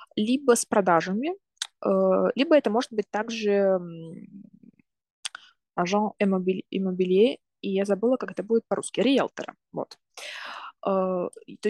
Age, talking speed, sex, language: 20-39, 105 wpm, female, Russian